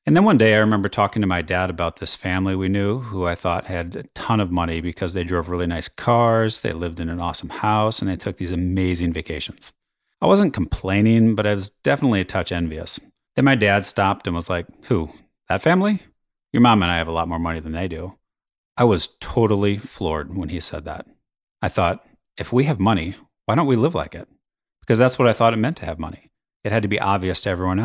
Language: English